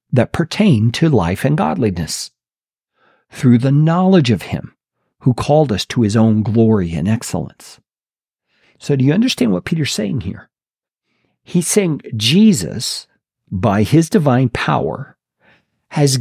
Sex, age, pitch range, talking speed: male, 50-69, 110-160 Hz, 135 wpm